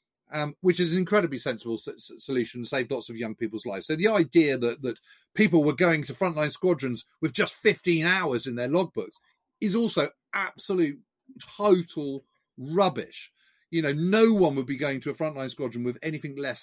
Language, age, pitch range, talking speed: English, 40-59, 130-185 Hz, 185 wpm